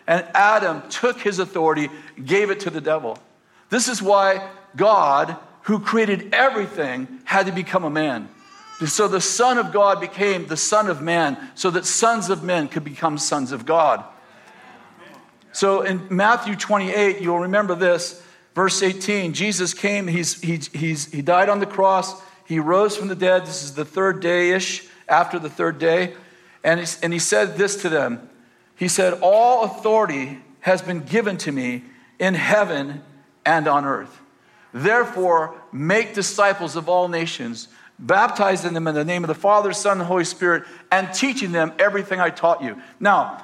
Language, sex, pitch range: English, male, 175-205 Hz